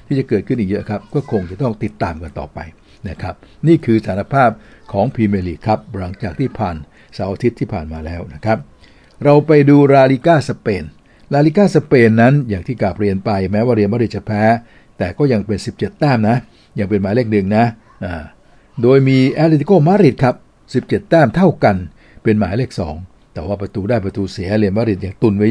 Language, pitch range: Thai, 100-125 Hz